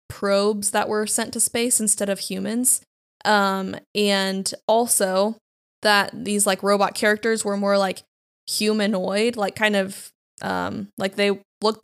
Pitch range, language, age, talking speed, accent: 190-215 Hz, English, 10-29, 140 wpm, American